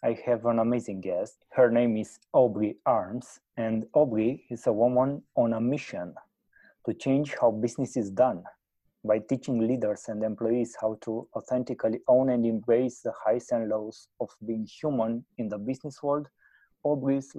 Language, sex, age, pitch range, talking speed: Romanian, male, 20-39, 115-130 Hz, 160 wpm